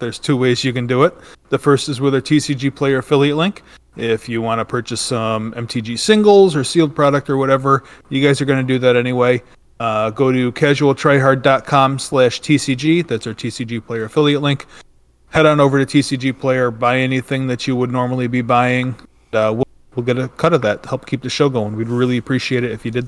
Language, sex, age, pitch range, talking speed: English, male, 30-49, 120-140 Hz, 215 wpm